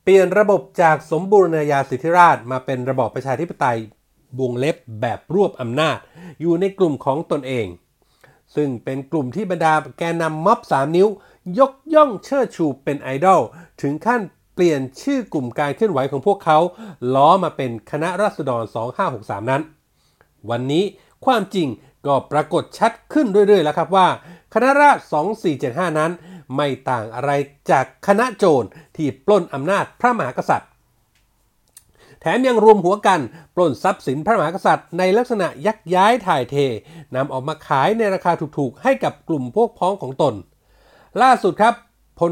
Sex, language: male, Thai